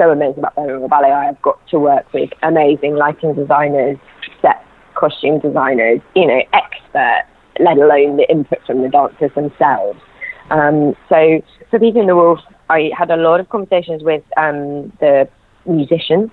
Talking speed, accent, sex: 165 wpm, British, female